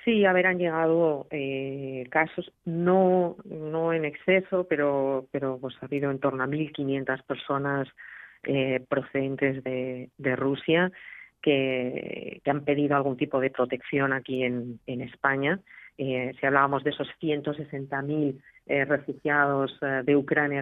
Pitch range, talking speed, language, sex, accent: 130-150 Hz, 135 wpm, Spanish, female, Spanish